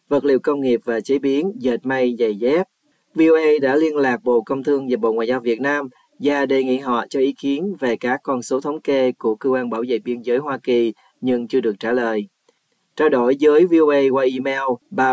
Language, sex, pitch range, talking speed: Vietnamese, male, 120-145 Hz, 230 wpm